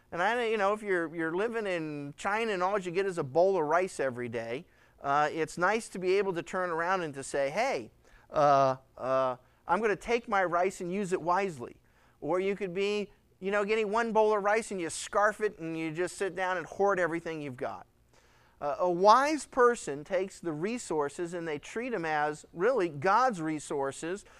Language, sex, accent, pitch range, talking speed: English, male, American, 170-220 Hz, 210 wpm